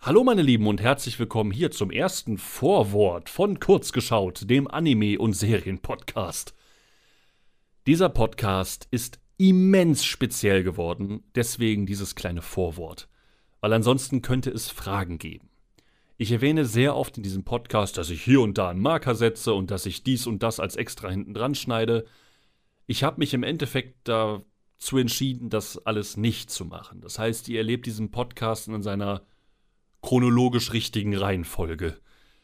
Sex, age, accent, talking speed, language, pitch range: male, 30-49, German, 150 wpm, German, 100-120 Hz